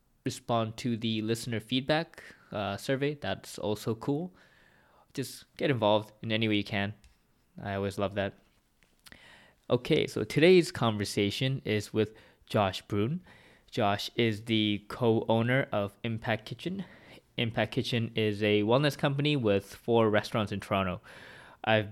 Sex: male